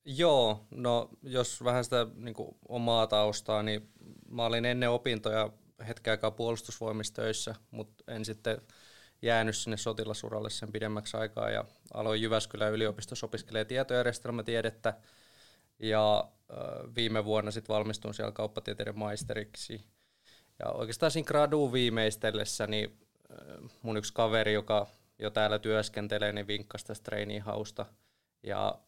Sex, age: male, 20-39